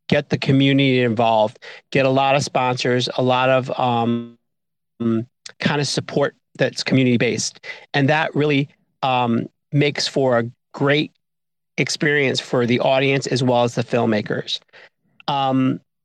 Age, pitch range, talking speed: 40-59, 130-165 Hz, 140 wpm